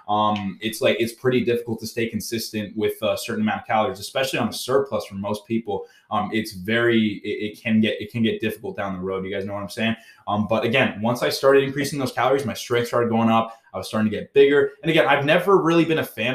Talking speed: 255 wpm